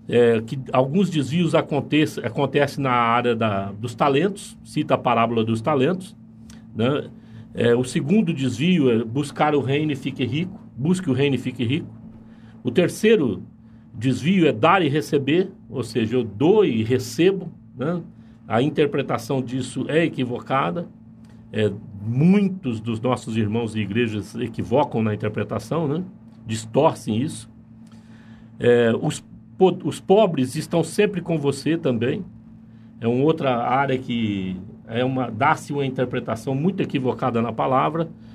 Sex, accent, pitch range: male, Brazilian, 115-150 Hz